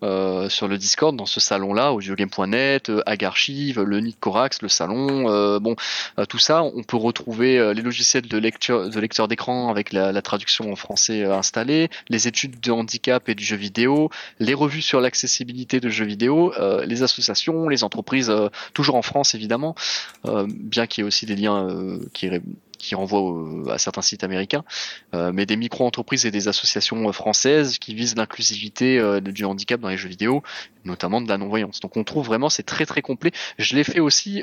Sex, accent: male, French